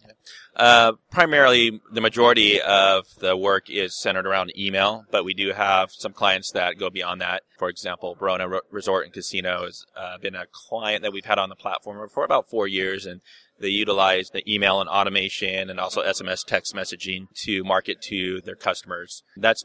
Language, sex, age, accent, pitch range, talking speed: English, male, 30-49, American, 90-100 Hz, 185 wpm